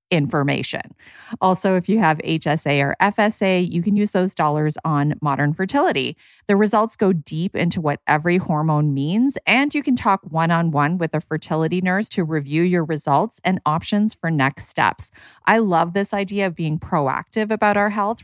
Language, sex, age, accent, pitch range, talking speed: English, female, 30-49, American, 150-210 Hz, 180 wpm